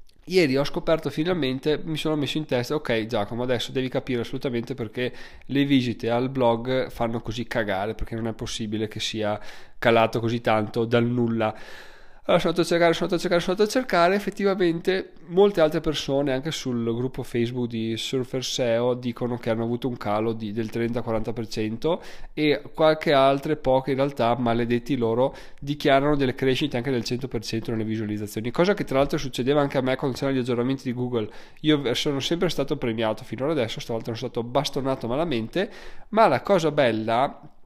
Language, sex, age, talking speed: Italian, male, 20-39, 175 wpm